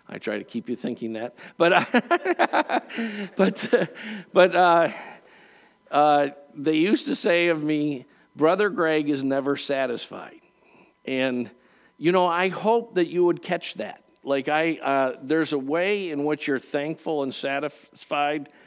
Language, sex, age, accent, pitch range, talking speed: English, male, 50-69, American, 130-170 Hz, 145 wpm